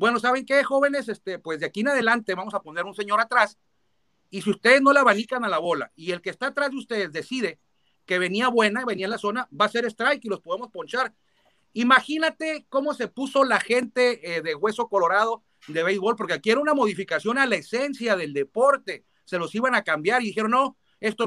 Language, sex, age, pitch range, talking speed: Spanish, male, 40-59, 195-240 Hz, 225 wpm